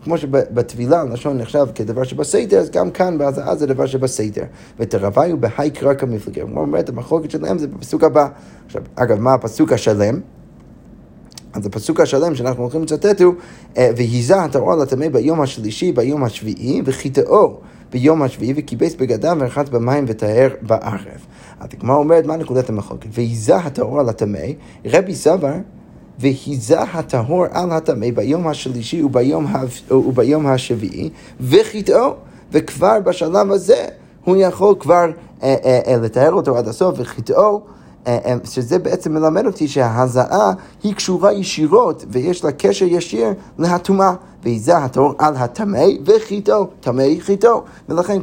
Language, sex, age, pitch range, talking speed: Hebrew, male, 30-49, 125-170 Hz, 135 wpm